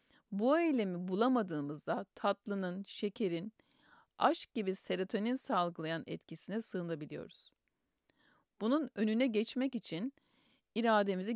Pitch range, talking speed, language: 180-250 Hz, 85 wpm, Turkish